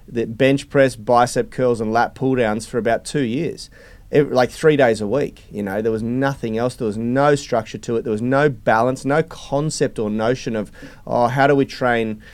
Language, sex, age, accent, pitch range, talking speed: English, male, 30-49, Australian, 115-135 Hz, 220 wpm